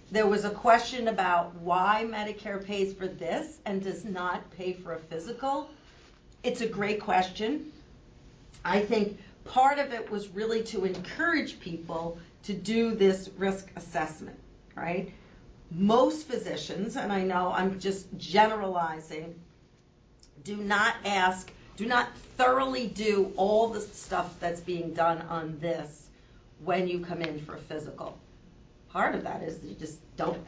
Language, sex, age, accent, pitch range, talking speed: English, female, 40-59, American, 165-200 Hz, 150 wpm